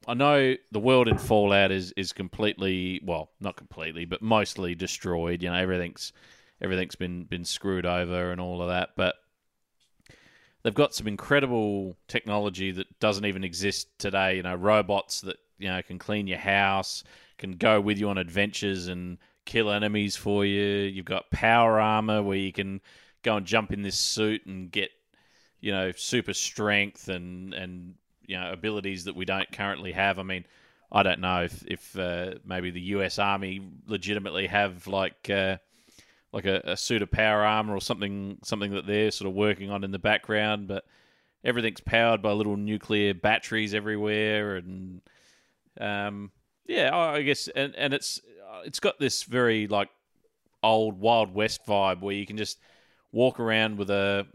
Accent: Australian